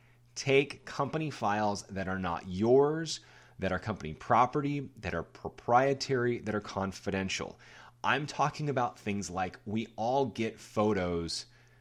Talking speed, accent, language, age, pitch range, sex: 130 wpm, American, English, 30-49, 95-125 Hz, male